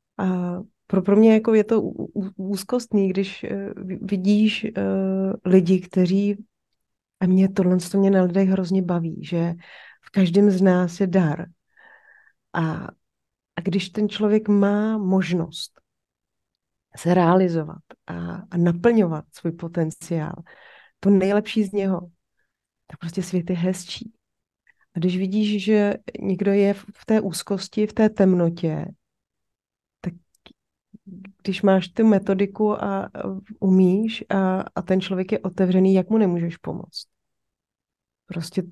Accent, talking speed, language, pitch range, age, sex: native, 125 wpm, Czech, 180-205 Hz, 30-49, female